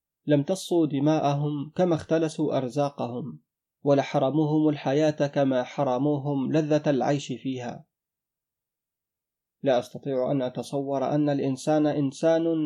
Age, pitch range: 30-49, 130-150 Hz